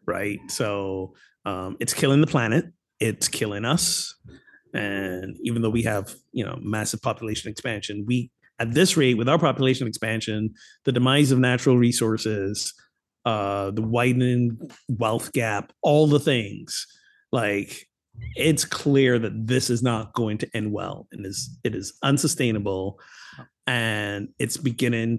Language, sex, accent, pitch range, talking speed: English, male, American, 105-130 Hz, 145 wpm